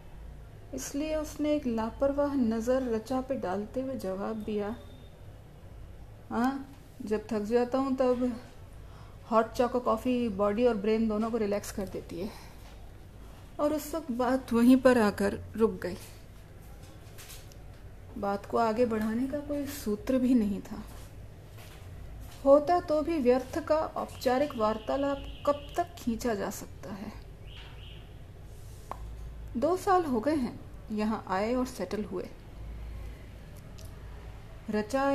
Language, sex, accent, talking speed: Hindi, female, native, 125 wpm